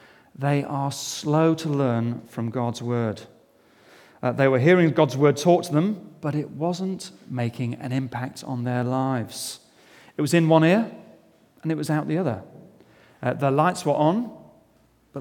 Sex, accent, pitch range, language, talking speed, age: male, British, 125-155 Hz, English, 170 wpm, 40-59